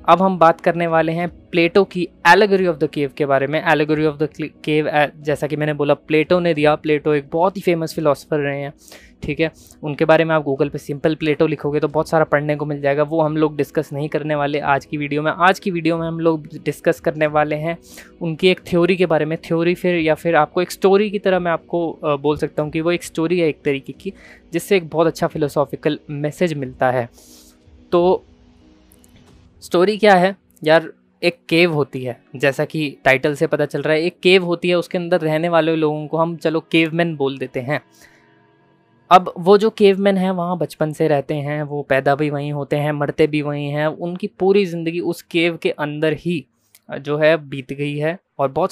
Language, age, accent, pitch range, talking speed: Hindi, 20-39, native, 145-170 Hz, 220 wpm